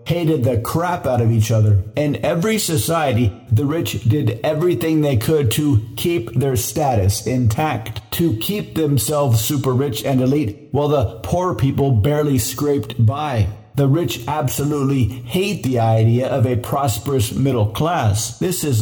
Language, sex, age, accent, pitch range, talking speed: English, male, 50-69, American, 115-145 Hz, 155 wpm